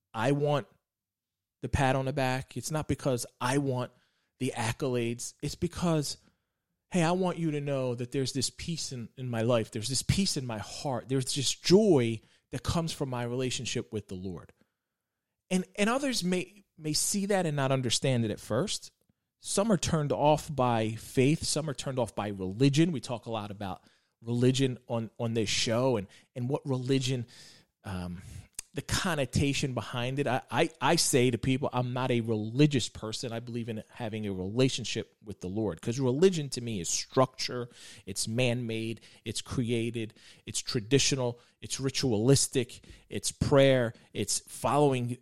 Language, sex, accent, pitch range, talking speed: English, male, American, 110-140 Hz, 170 wpm